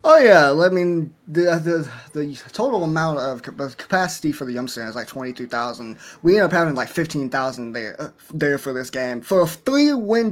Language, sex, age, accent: English, male, 20-39, American